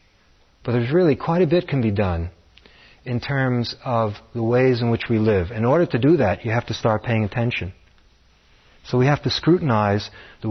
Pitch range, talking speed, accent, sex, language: 90-125 Hz, 200 wpm, American, male, English